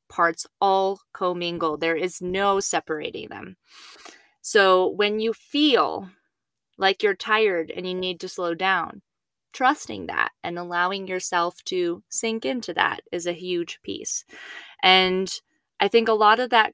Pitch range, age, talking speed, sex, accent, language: 170-210 Hz, 20-39, 145 wpm, female, American, English